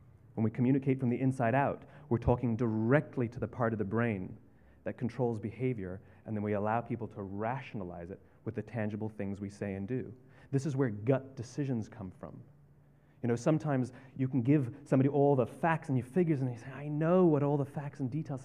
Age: 30-49